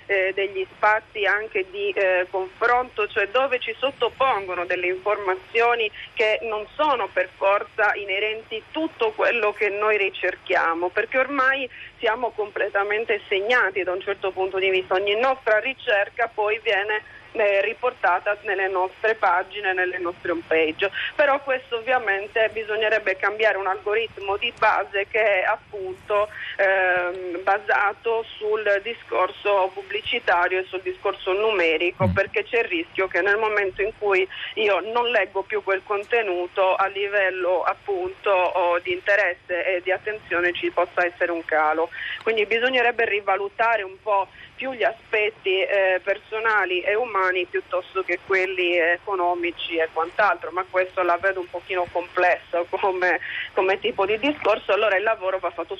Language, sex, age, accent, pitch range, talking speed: Italian, female, 40-59, native, 185-220 Hz, 140 wpm